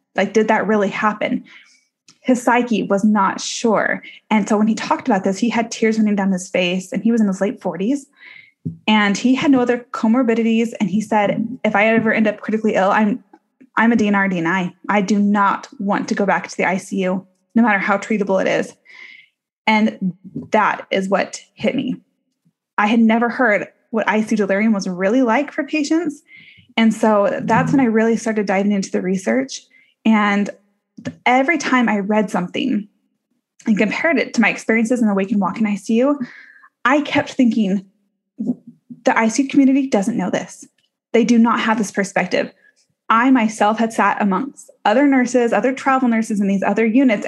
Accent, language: American, English